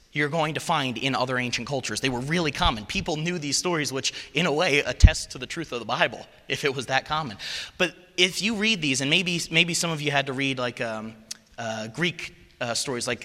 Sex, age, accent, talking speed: male, 30-49, American, 240 wpm